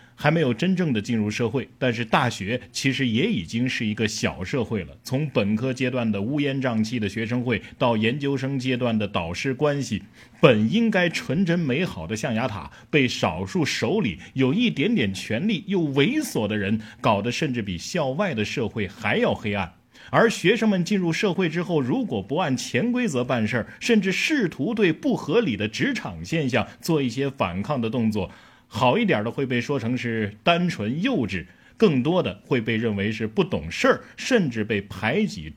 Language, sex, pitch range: Chinese, male, 115-165 Hz